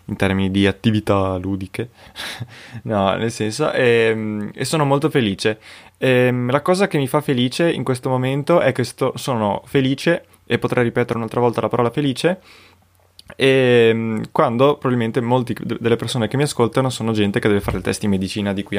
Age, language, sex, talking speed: 20-39, Italian, male, 180 wpm